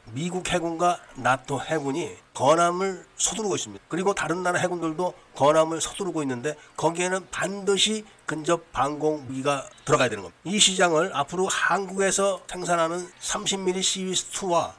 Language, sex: Korean, male